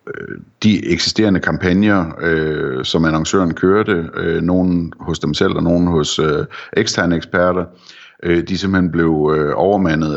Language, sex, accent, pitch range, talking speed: Danish, male, native, 80-90 Hz, 140 wpm